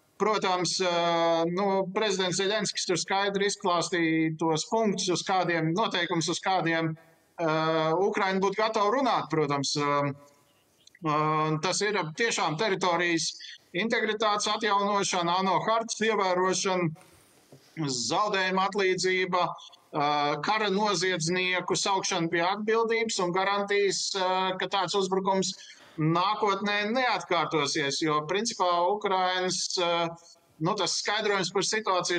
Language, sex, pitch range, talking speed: English, male, 165-200 Hz, 90 wpm